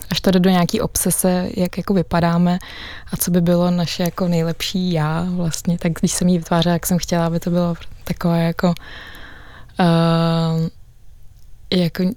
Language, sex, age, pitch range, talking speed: Czech, female, 20-39, 165-185 Hz, 160 wpm